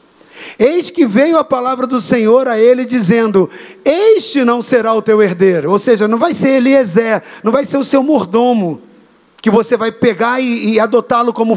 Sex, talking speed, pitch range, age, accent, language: male, 185 wpm, 225-280 Hz, 50-69, Brazilian, Portuguese